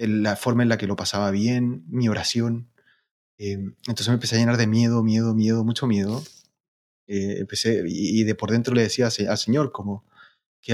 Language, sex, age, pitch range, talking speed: Spanish, male, 30-49, 105-125 Hz, 180 wpm